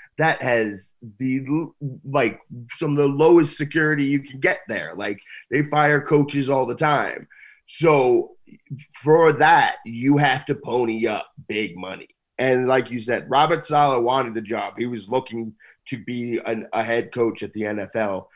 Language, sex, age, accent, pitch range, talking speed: English, male, 30-49, American, 110-140 Hz, 165 wpm